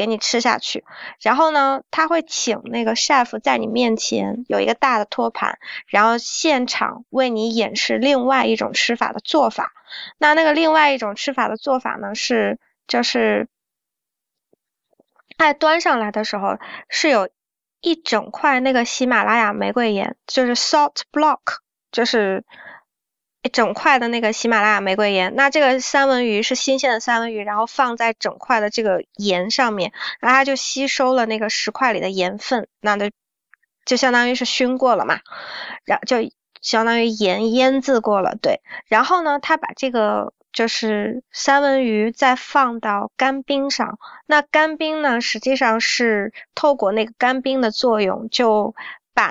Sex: female